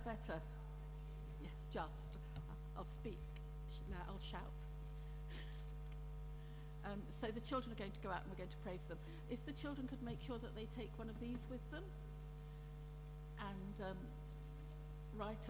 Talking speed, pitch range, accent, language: 155 wpm, 150-170 Hz, British, English